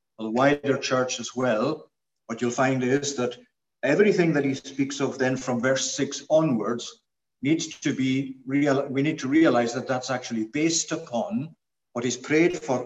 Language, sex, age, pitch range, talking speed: English, male, 50-69, 120-140 Hz, 175 wpm